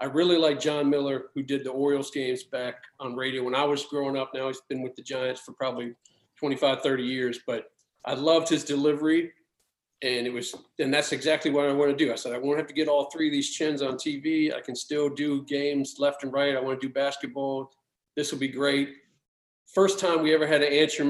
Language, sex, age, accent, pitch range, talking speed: English, male, 40-59, American, 140-185 Hz, 235 wpm